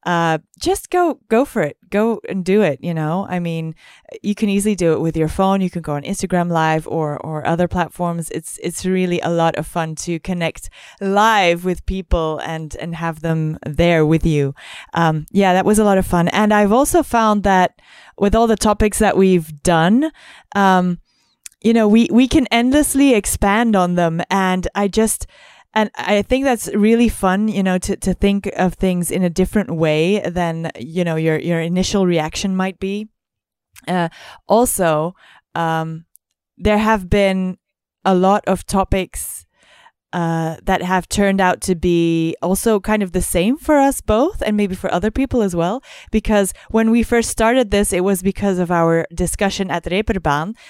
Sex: female